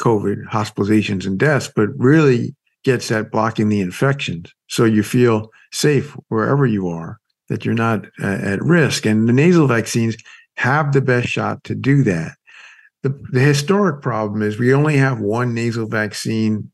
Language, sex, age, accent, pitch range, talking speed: English, male, 50-69, American, 110-140 Hz, 165 wpm